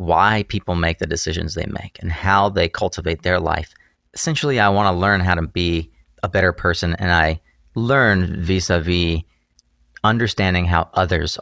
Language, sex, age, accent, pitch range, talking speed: English, male, 30-49, American, 85-105 Hz, 165 wpm